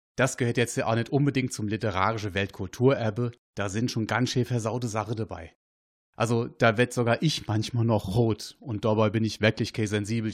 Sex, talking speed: male, 190 wpm